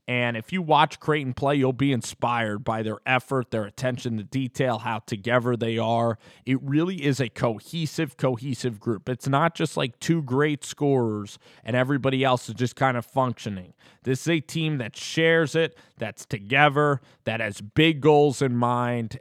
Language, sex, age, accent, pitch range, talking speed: English, male, 20-39, American, 115-140 Hz, 180 wpm